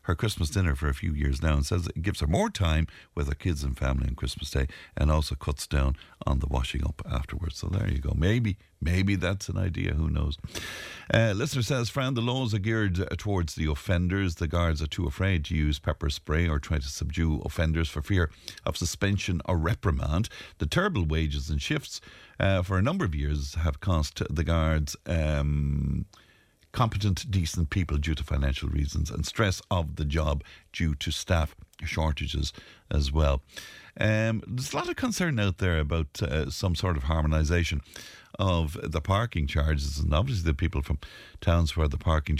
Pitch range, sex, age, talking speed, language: 75-95 Hz, male, 50-69, 190 wpm, English